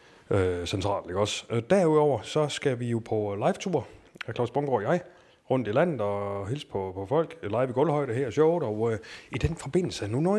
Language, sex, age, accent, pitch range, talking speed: Danish, male, 30-49, native, 105-135 Hz, 225 wpm